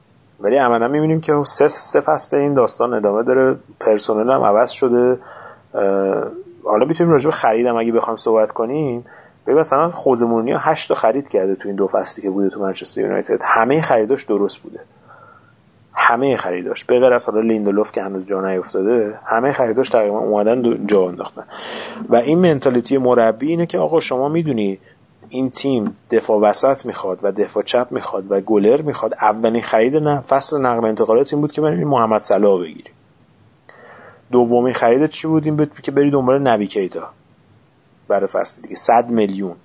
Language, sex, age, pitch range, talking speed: Persian, male, 30-49, 110-145 Hz, 160 wpm